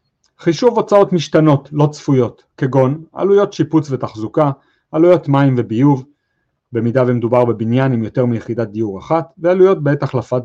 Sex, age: male, 40-59